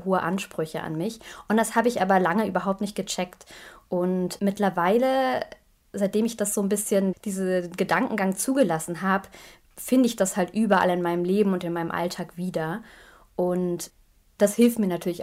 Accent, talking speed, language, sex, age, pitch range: German, 170 wpm, German, female, 20-39, 170-195 Hz